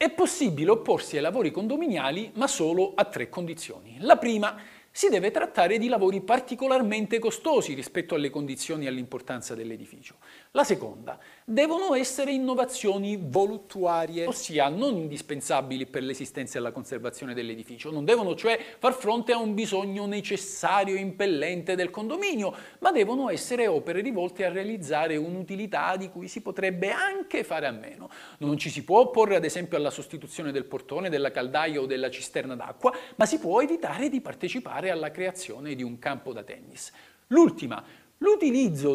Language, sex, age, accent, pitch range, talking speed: Italian, male, 40-59, native, 175-285 Hz, 155 wpm